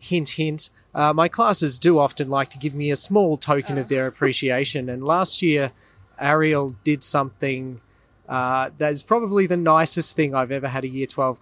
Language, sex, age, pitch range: English, male, 30-49, 130-160 Hz